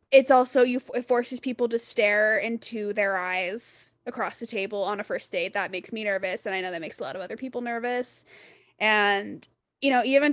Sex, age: female, 10-29